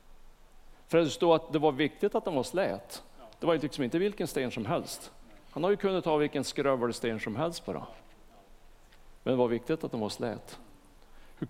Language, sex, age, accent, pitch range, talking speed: Swedish, male, 50-69, Norwegian, 115-160 Hz, 215 wpm